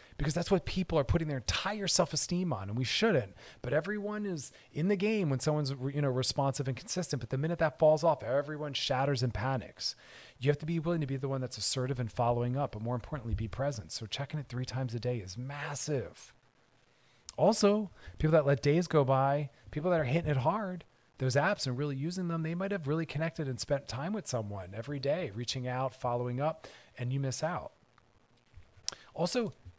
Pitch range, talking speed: 130-165 Hz, 210 wpm